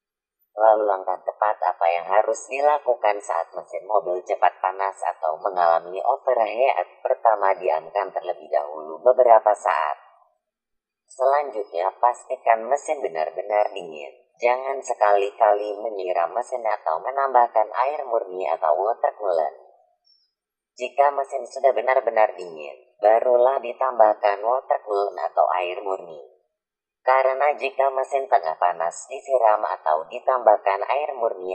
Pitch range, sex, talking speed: 105-130 Hz, female, 115 wpm